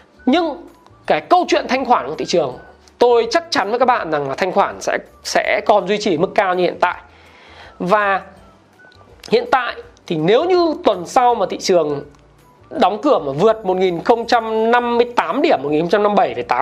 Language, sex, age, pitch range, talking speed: Vietnamese, male, 20-39, 180-270 Hz, 170 wpm